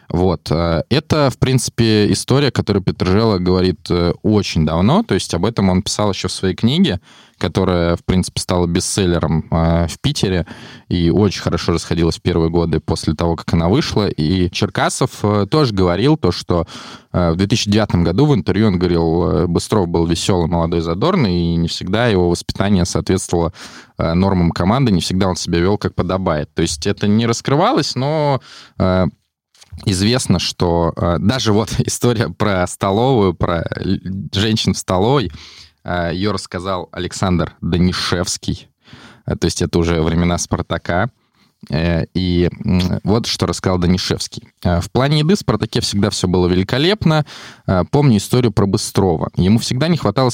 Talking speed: 145 wpm